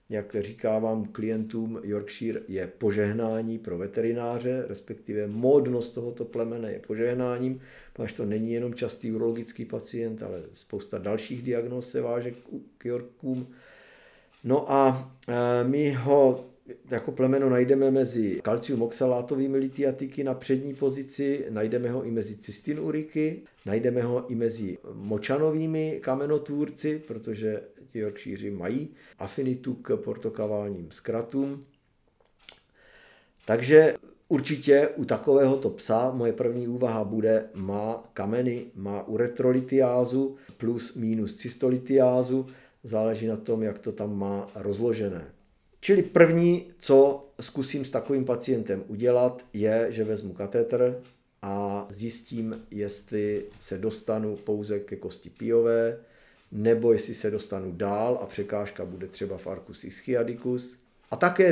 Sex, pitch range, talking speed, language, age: male, 110-130 Hz, 115 wpm, Czech, 50-69